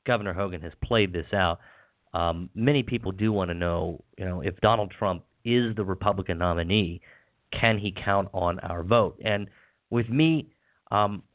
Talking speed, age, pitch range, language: 170 wpm, 40-59, 90-110 Hz, English